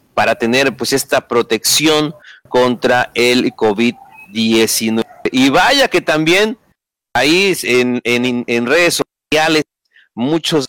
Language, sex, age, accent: Spanish, male, 40-59, Mexican